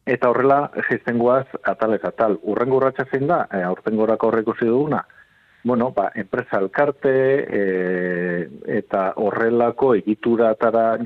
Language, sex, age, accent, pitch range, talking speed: Spanish, male, 50-69, Spanish, 100-120 Hz, 70 wpm